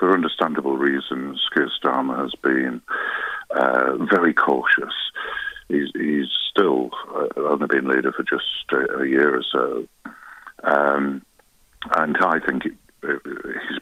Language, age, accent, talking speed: English, 50-69, British, 125 wpm